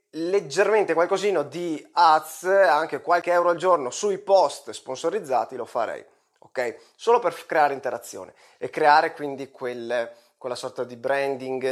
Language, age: Italian, 20-39